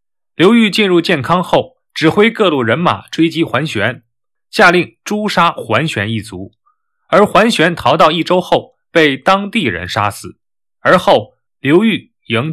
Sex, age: male, 20-39